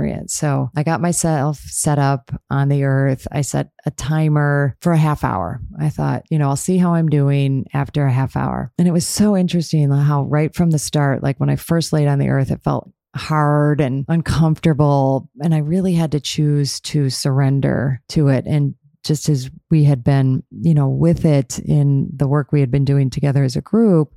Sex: female